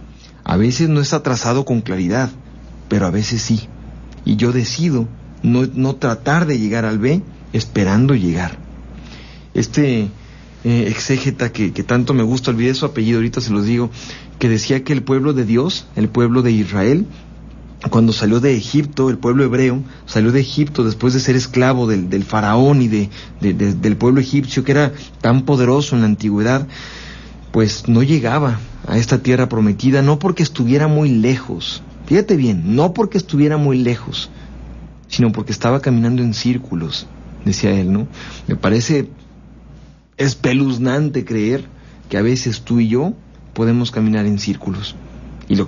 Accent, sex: Mexican, male